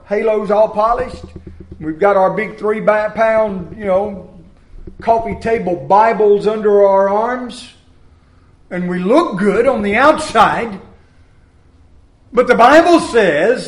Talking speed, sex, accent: 125 wpm, male, American